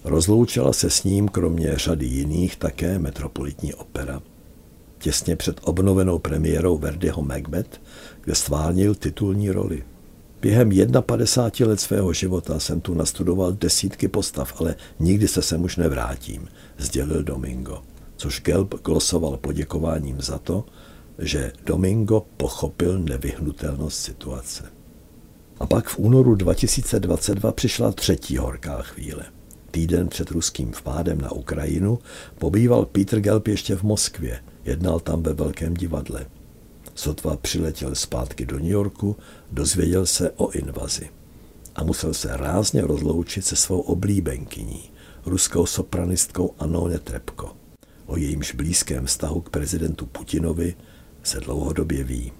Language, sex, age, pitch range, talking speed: Czech, male, 60-79, 75-95 Hz, 125 wpm